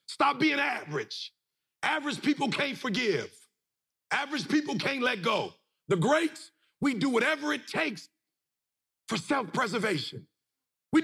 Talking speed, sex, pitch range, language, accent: 120 wpm, male, 275-330 Hz, English, American